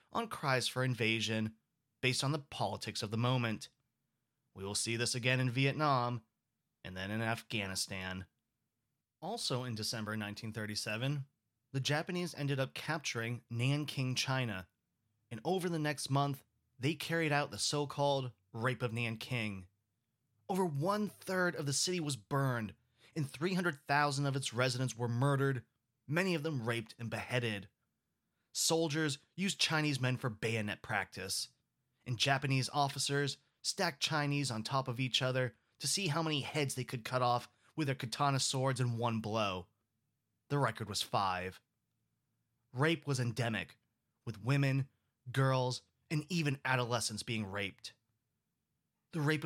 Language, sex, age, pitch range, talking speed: English, male, 20-39, 115-140 Hz, 140 wpm